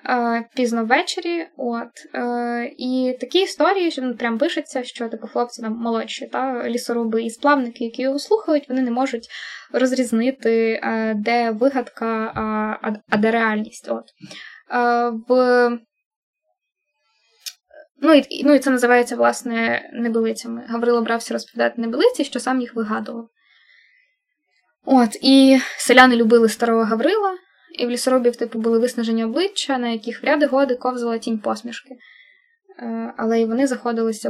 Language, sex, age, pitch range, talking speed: Ukrainian, female, 10-29, 230-275 Hz, 135 wpm